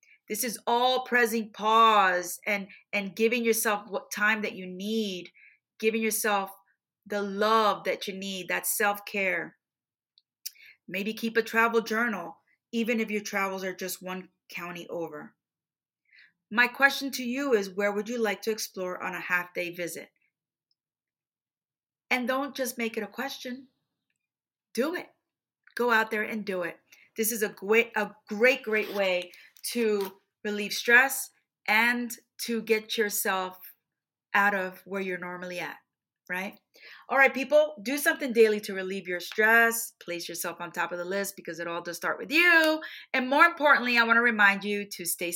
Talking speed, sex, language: 165 wpm, female, English